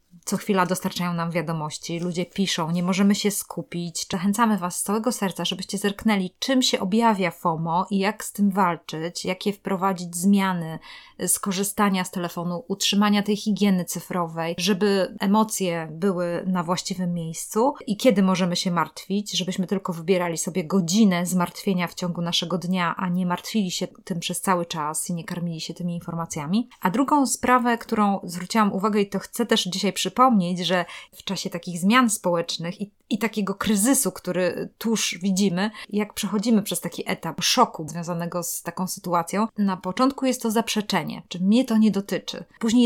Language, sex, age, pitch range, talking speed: Polish, female, 20-39, 175-210 Hz, 165 wpm